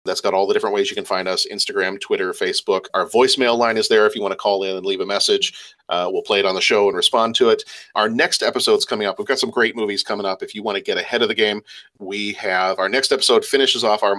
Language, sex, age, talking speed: English, male, 40-59, 290 wpm